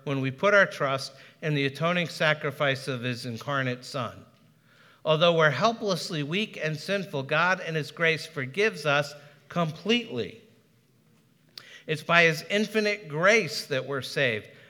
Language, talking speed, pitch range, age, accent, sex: English, 140 wpm, 145-185 Hz, 50-69, American, male